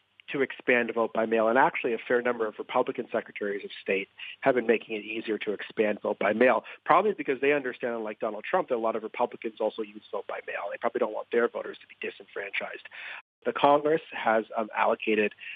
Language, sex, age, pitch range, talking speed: English, male, 40-59, 110-125 Hz, 195 wpm